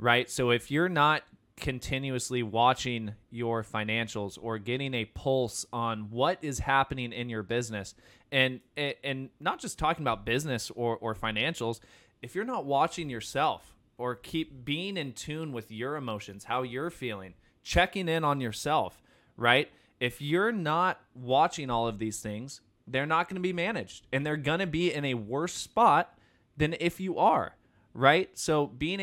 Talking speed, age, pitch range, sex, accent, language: 165 wpm, 20-39, 110-140 Hz, male, American, English